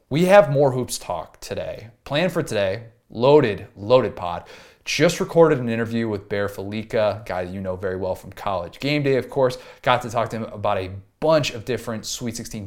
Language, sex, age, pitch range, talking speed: English, male, 30-49, 105-140 Hz, 205 wpm